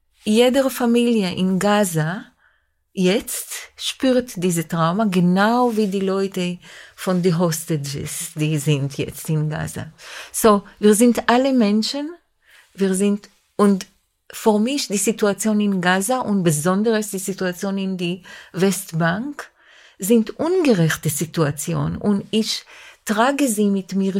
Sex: female